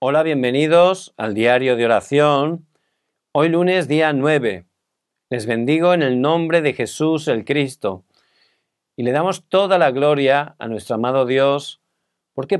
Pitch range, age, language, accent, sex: 120-160 Hz, 50-69, Korean, Spanish, male